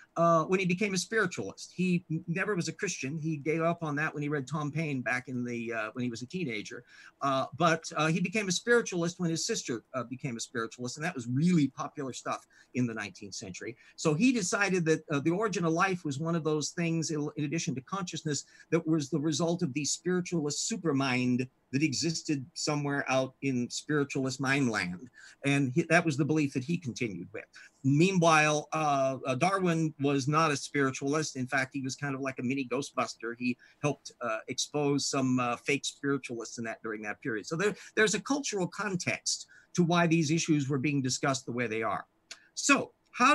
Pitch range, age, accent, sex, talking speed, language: 135-175 Hz, 50-69, American, male, 205 wpm, English